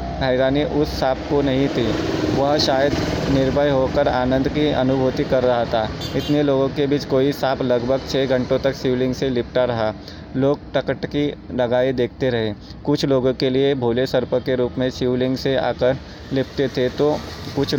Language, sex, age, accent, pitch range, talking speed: Hindi, male, 20-39, native, 125-140 Hz, 170 wpm